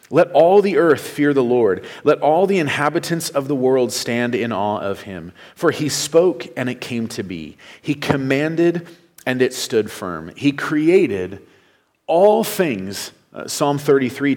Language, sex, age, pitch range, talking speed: English, male, 40-59, 110-145 Hz, 165 wpm